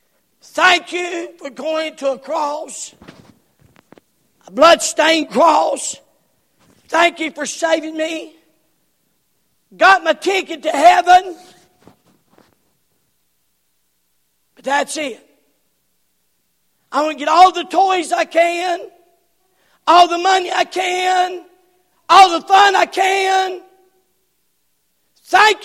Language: English